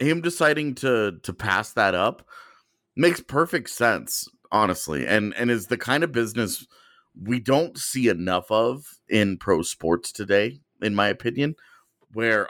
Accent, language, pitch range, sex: American, English, 100-130 Hz, male